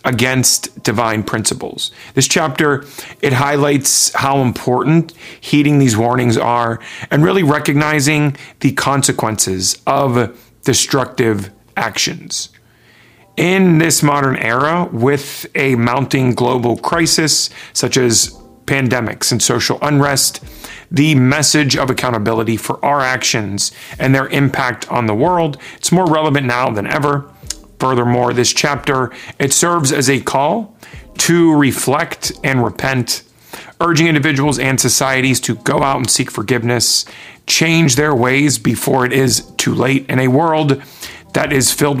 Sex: male